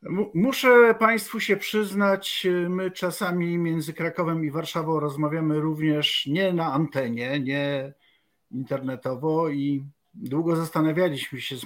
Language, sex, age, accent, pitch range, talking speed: Polish, male, 50-69, native, 140-180 Hz, 115 wpm